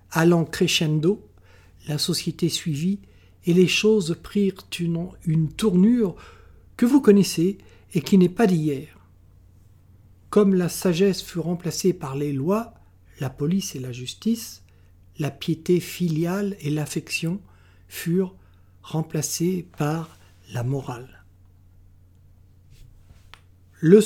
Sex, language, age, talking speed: male, French, 60-79, 110 wpm